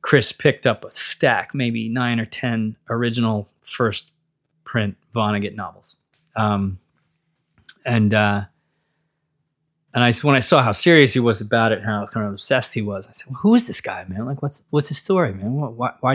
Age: 20-39